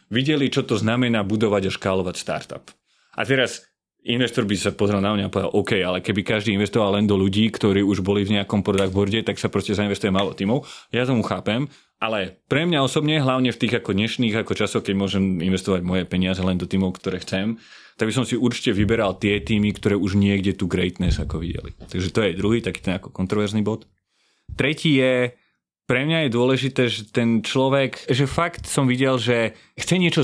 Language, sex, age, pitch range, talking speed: Slovak, male, 30-49, 100-130 Hz, 200 wpm